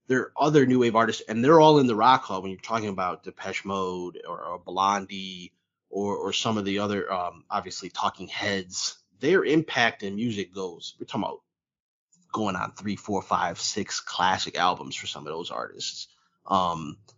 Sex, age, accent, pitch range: male, 30-49, American, 100-135 Hz